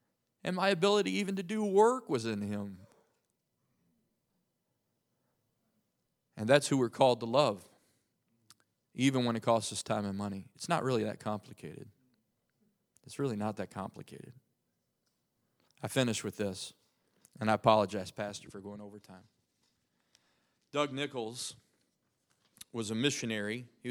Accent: American